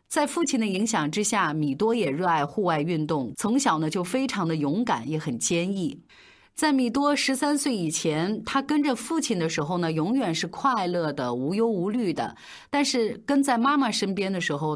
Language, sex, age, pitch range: Chinese, female, 30-49, 155-230 Hz